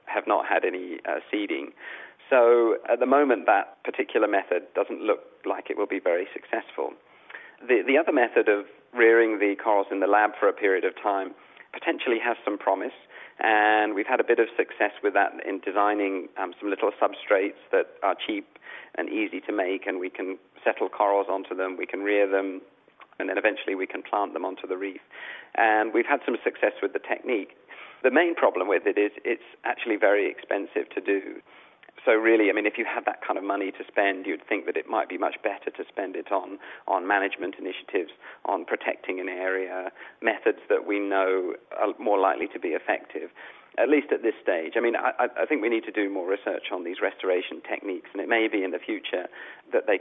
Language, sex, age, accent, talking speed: English, male, 40-59, British, 210 wpm